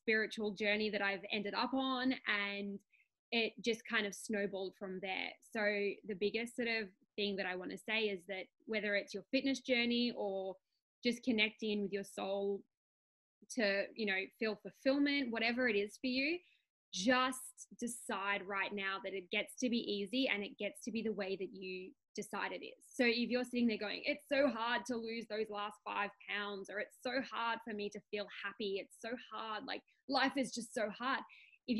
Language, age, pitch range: English, 20-39, 205-245 Hz